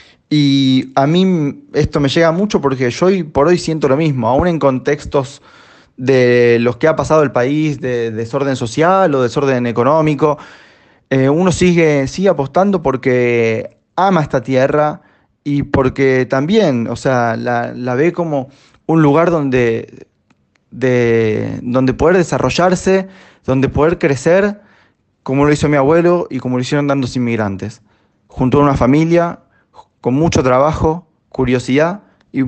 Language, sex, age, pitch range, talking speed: Italian, male, 20-39, 125-155 Hz, 145 wpm